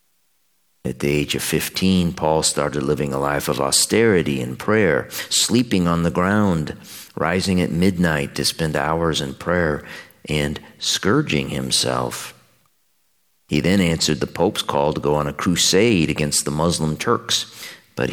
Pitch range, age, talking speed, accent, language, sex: 70-95 Hz, 50-69, 150 wpm, American, English, male